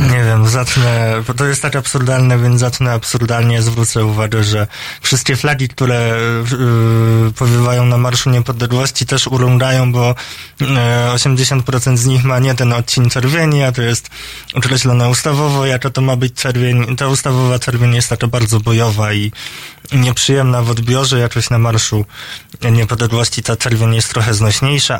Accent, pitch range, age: native, 115-130 Hz, 20-39